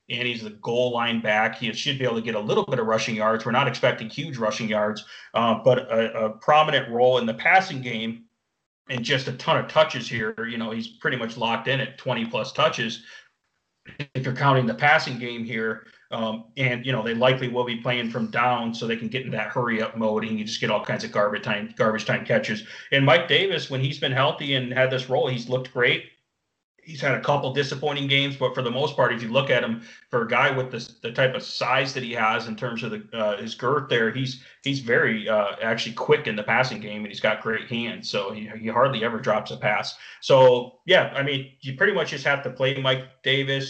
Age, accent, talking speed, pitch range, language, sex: 30-49, American, 240 wpm, 110-130 Hz, English, male